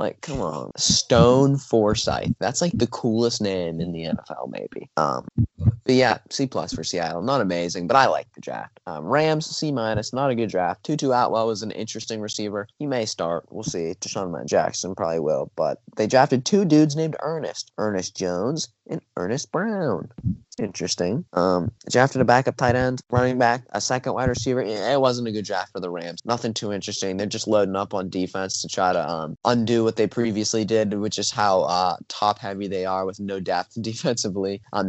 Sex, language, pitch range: male, English, 95-120 Hz